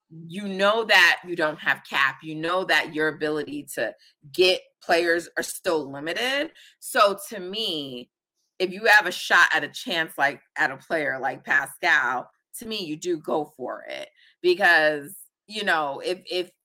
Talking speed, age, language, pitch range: 170 wpm, 30-49, English, 155-205 Hz